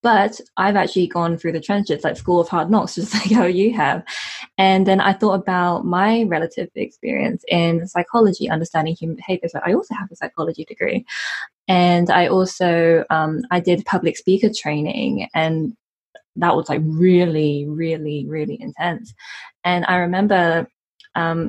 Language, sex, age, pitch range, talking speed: English, female, 20-39, 170-220 Hz, 160 wpm